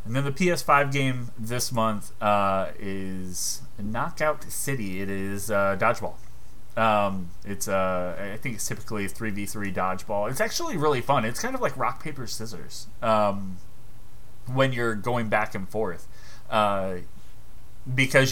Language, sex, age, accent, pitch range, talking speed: English, male, 30-49, American, 95-115 Hz, 155 wpm